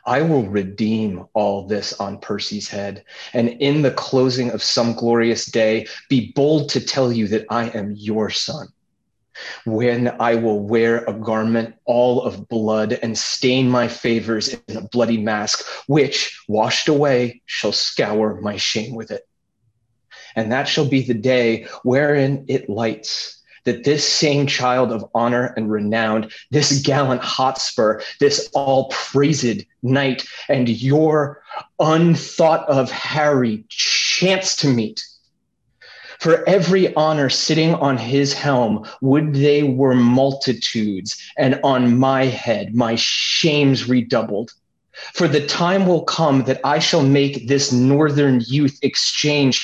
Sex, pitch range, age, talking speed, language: male, 115-145 Hz, 30-49, 140 wpm, English